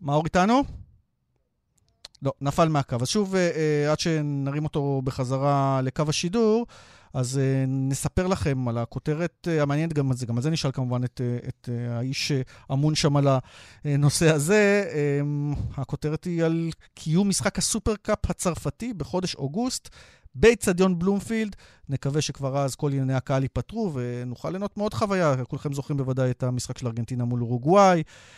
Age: 40-59